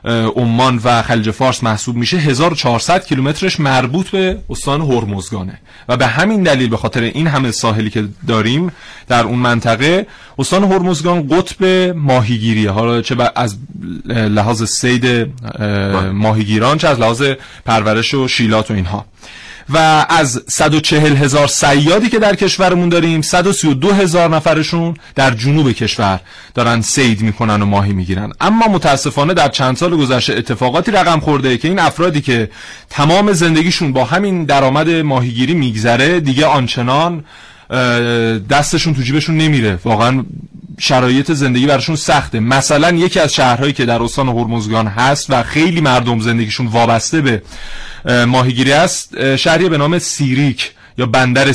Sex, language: male, Persian